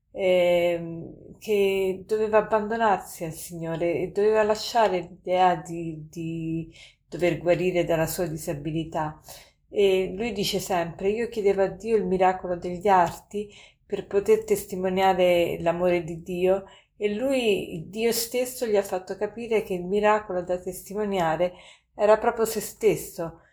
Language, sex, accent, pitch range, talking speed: Italian, female, native, 175-210 Hz, 130 wpm